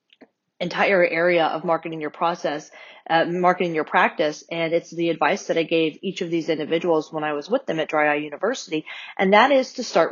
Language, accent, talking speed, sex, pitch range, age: English, American, 210 wpm, female, 165-195 Hz, 40-59